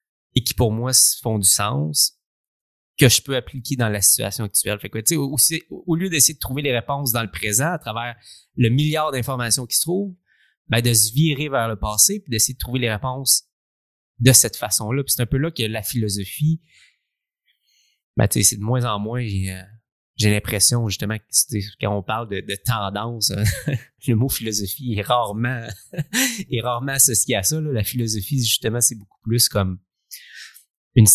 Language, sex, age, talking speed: English, male, 30-49, 195 wpm